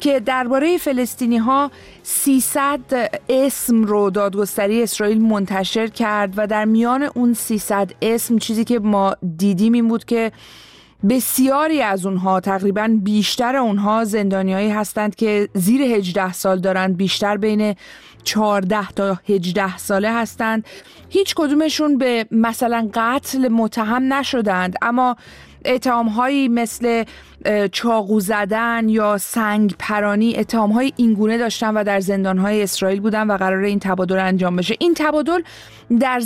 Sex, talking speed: female, 125 wpm